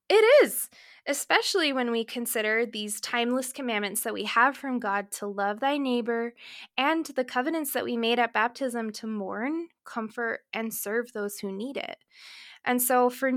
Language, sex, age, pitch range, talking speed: English, female, 20-39, 220-280 Hz, 170 wpm